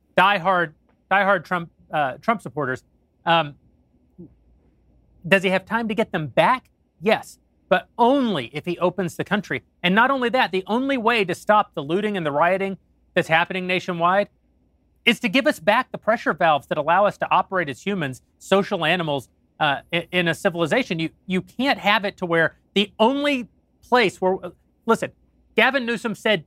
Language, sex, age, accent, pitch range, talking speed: English, male, 30-49, American, 165-215 Hz, 180 wpm